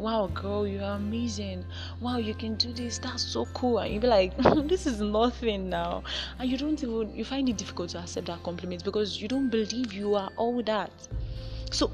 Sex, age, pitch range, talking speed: female, 20-39, 160-240 Hz, 210 wpm